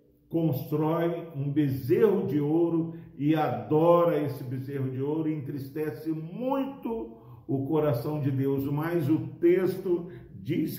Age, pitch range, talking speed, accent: 50-69, 145-175 Hz, 120 wpm, Brazilian